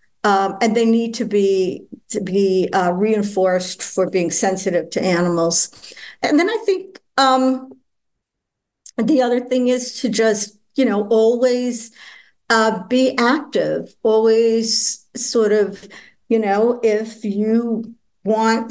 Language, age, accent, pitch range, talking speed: English, 50-69, American, 195-240 Hz, 130 wpm